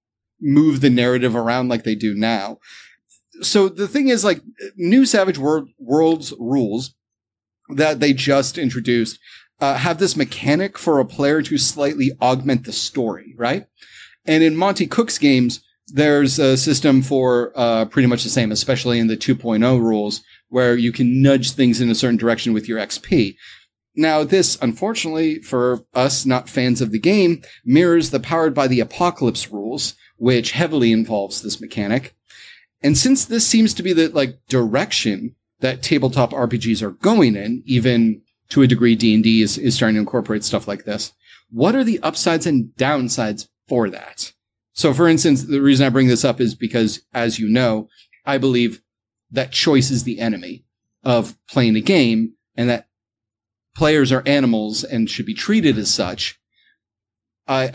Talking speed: 170 wpm